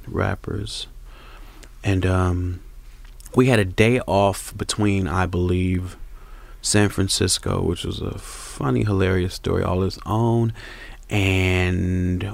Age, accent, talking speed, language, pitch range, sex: 30-49, American, 110 wpm, English, 90-105 Hz, male